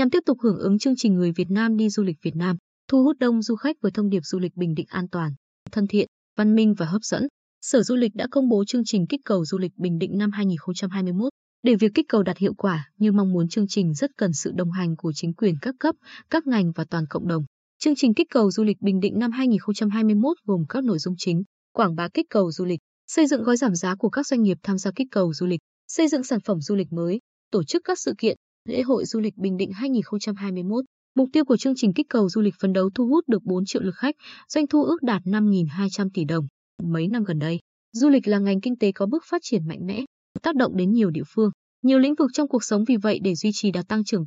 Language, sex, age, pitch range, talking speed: Vietnamese, female, 20-39, 185-250 Hz, 265 wpm